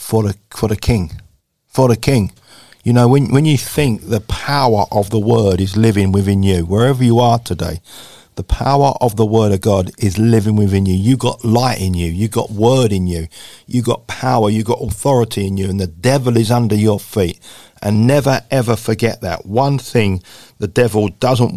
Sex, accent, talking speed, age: male, British, 205 wpm, 50-69